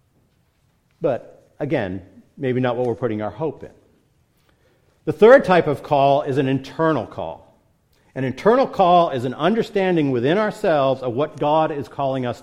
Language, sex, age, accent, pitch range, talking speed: English, male, 50-69, American, 130-170 Hz, 160 wpm